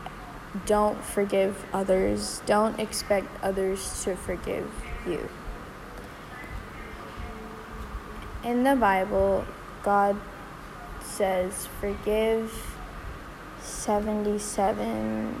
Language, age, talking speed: English, 10-29, 60 wpm